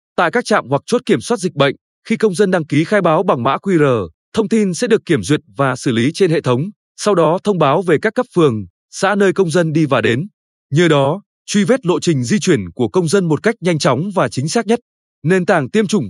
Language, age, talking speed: Vietnamese, 20-39, 255 wpm